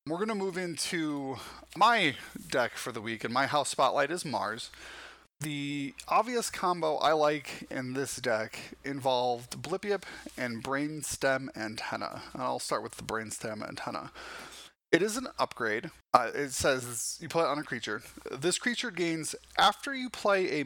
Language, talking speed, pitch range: English, 160 wpm, 135-180 Hz